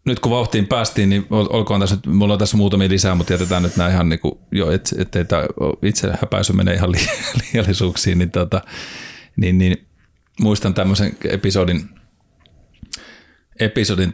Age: 30-49